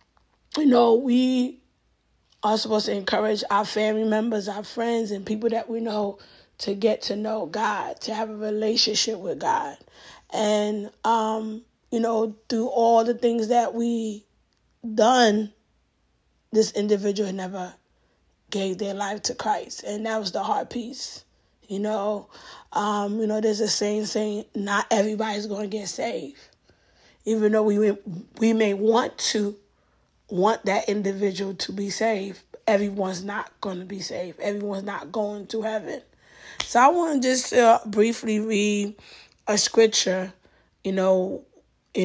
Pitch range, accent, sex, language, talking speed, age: 195-225 Hz, American, female, English, 150 wpm, 20-39